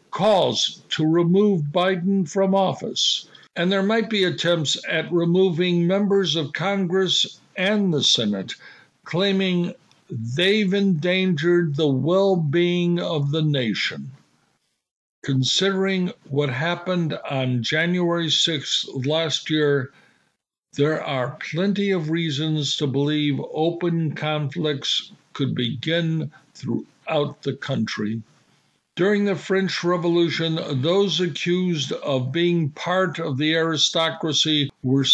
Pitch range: 150-180 Hz